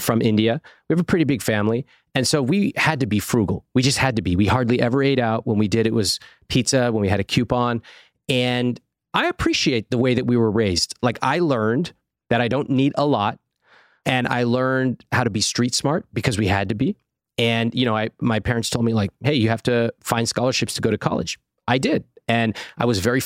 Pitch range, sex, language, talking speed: 105-130 Hz, male, English, 235 wpm